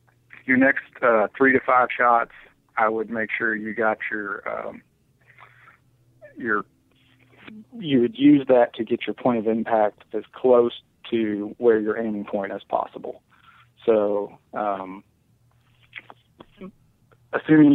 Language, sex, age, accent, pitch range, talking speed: English, male, 40-59, American, 105-125 Hz, 125 wpm